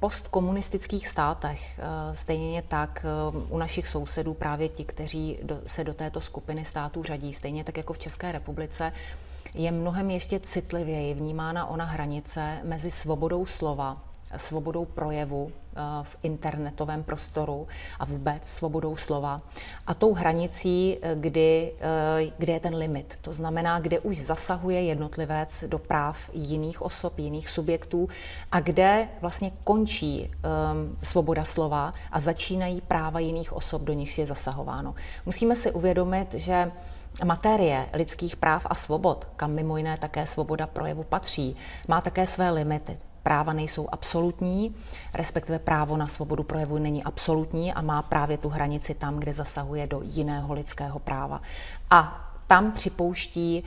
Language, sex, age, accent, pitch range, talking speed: Czech, female, 30-49, native, 150-170 Hz, 135 wpm